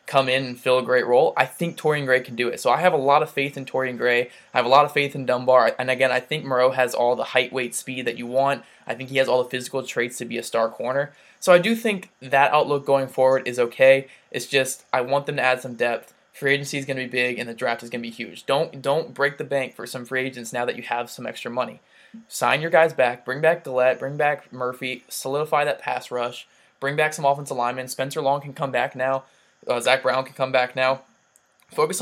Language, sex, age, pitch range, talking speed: English, male, 20-39, 125-140 Hz, 265 wpm